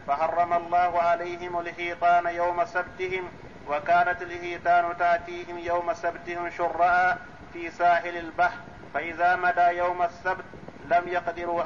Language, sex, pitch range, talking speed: Arabic, male, 170-180 Hz, 110 wpm